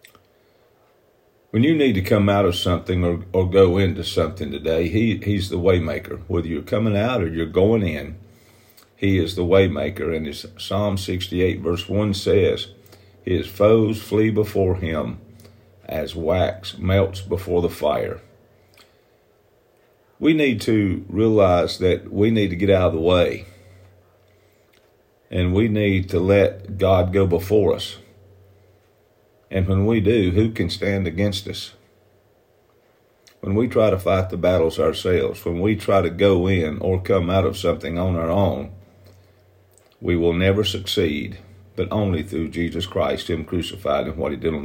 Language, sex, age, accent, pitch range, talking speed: English, male, 50-69, American, 90-105 Hz, 160 wpm